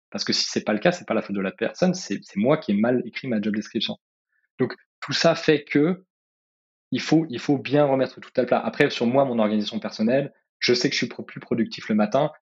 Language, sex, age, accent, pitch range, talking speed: French, male, 20-39, French, 110-145 Hz, 255 wpm